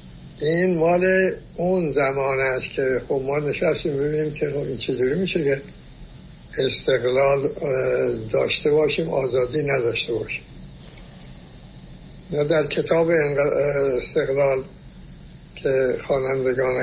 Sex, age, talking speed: male, 60-79, 100 wpm